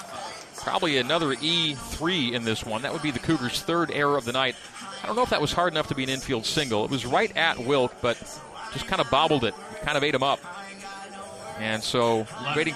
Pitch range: 115-160 Hz